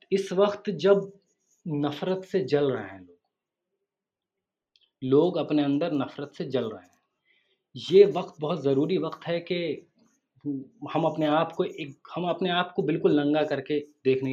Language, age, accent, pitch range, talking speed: Hindi, 30-49, native, 135-185 Hz, 155 wpm